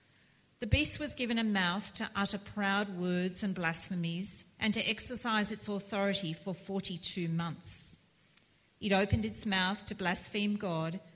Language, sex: English, female